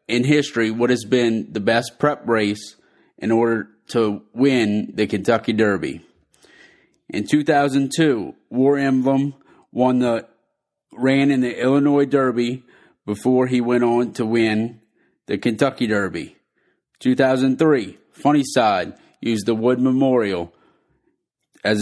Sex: male